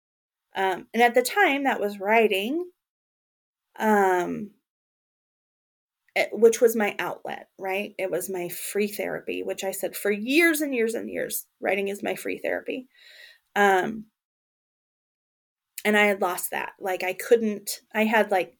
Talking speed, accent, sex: 145 wpm, American, female